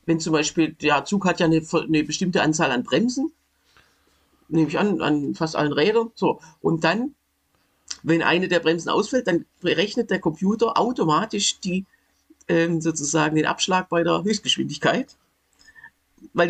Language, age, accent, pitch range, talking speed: German, 50-69, German, 160-200 Hz, 150 wpm